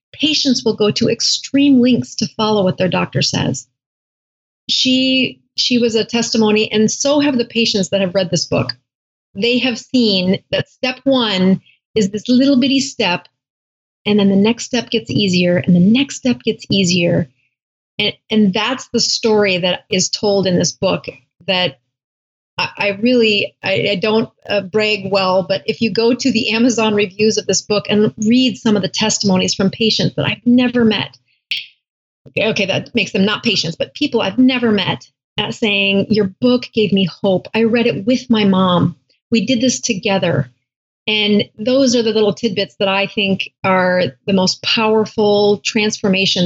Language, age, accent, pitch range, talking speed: English, 30-49, American, 185-230 Hz, 175 wpm